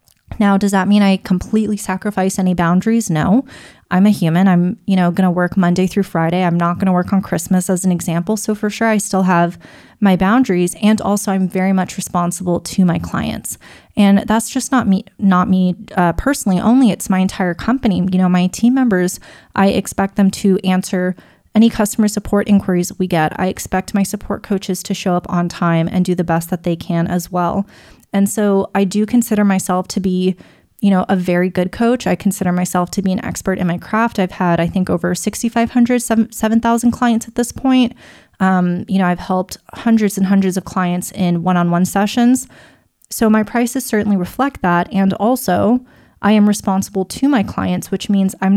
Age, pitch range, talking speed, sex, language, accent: 20-39, 180-210 Hz, 200 wpm, female, English, American